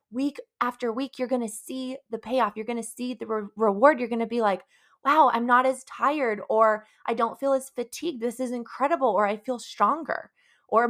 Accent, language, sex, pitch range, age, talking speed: American, English, female, 215-260 Hz, 20-39, 215 wpm